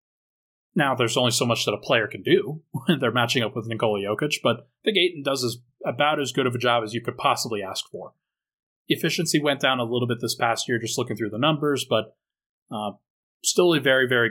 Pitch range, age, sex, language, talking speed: 120-140 Hz, 30-49, male, English, 225 wpm